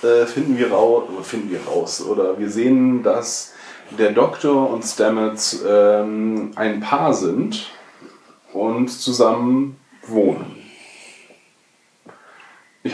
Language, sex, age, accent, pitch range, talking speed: German, male, 30-49, German, 110-155 Hz, 100 wpm